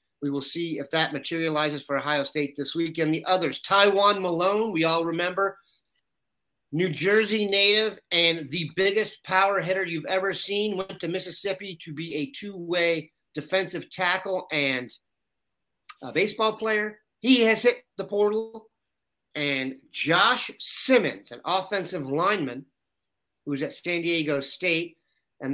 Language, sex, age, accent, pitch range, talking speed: English, male, 40-59, American, 145-195 Hz, 140 wpm